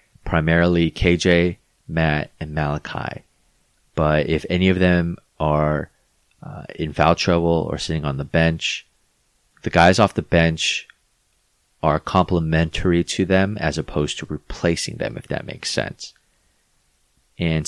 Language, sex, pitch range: English, male, 75-85 Hz